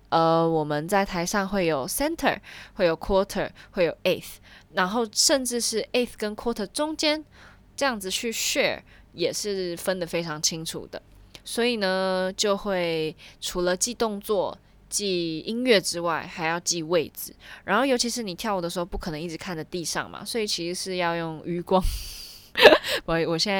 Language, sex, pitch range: Chinese, female, 160-200 Hz